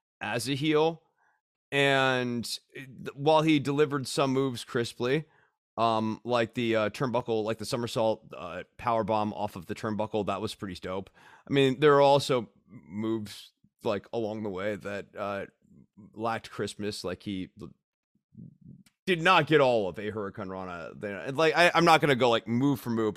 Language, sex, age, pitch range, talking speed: English, male, 30-49, 115-160 Hz, 165 wpm